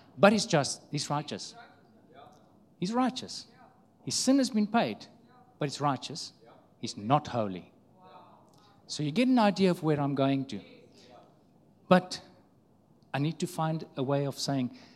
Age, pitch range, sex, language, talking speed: 50-69, 130-170 Hz, male, English, 150 wpm